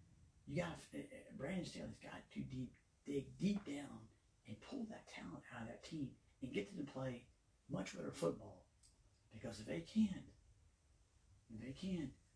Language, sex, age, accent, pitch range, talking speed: English, male, 40-59, American, 105-140 Hz, 170 wpm